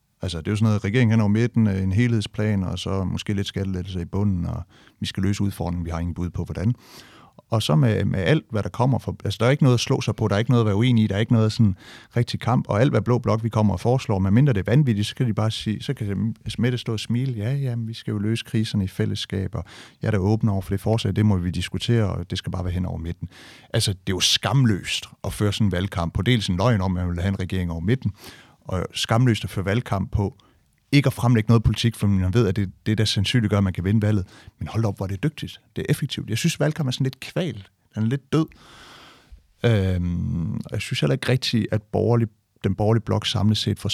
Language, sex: Danish, male